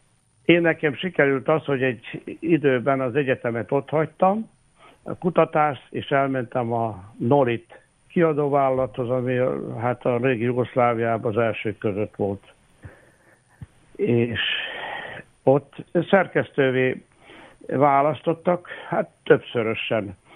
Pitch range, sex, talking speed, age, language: 125-155 Hz, male, 95 wpm, 60-79, Hungarian